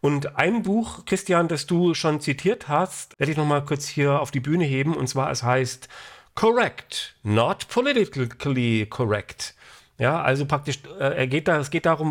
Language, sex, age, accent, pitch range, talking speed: English, male, 40-59, German, 130-170 Hz, 165 wpm